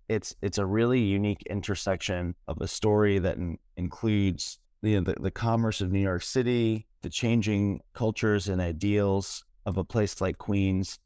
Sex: male